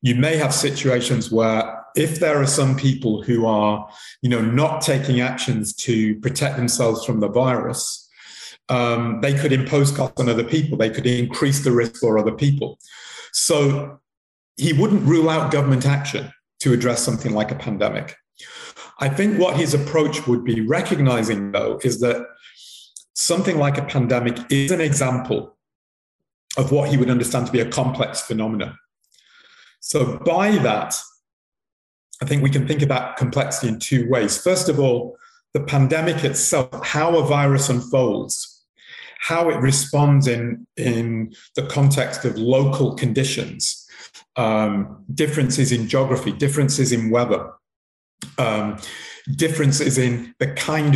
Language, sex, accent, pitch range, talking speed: Danish, male, British, 120-145 Hz, 145 wpm